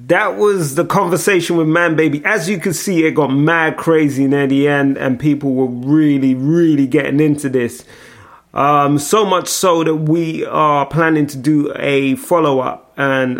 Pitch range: 135-160 Hz